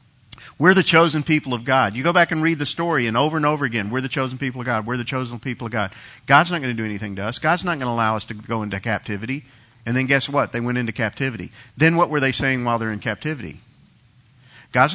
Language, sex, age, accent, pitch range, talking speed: English, male, 50-69, American, 120-165 Hz, 265 wpm